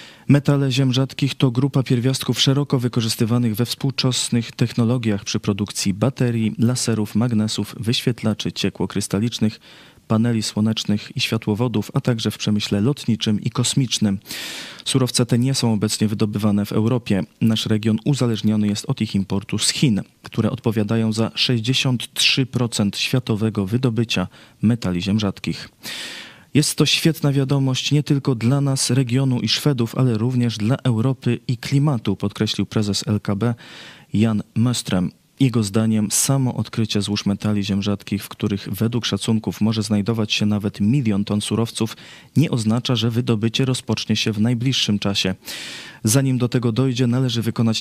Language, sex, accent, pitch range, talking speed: Polish, male, native, 105-130 Hz, 140 wpm